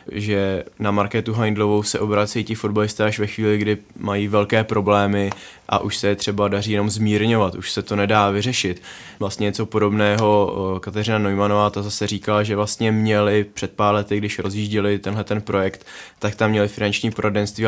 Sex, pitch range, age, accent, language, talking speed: male, 105-110 Hz, 20-39, native, Czech, 175 wpm